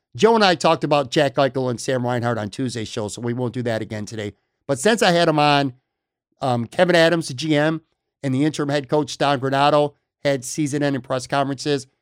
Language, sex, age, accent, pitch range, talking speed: English, male, 50-69, American, 125-155 Hz, 220 wpm